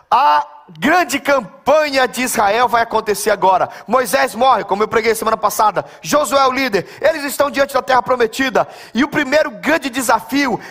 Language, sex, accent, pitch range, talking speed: Portuguese, male, Brazilian, 240-290 Hz, 170 wpm